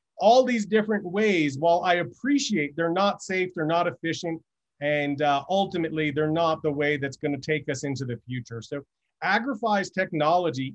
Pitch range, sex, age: 155-200 Hz, male, 30-49